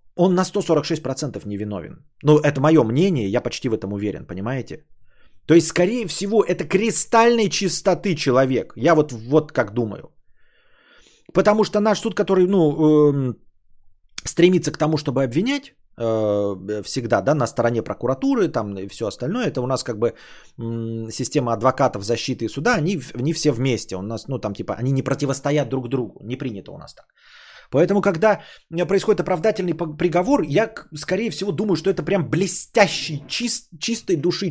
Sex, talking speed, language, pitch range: male, 165 wpm, Bulgarian, 125-180 Hz